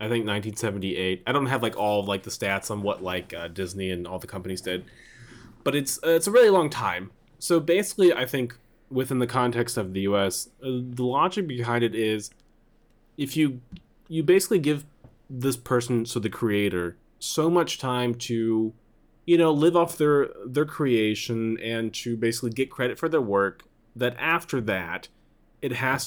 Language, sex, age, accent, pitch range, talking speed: English, male, 20-39, American, 100-130 Hz, 180 wpm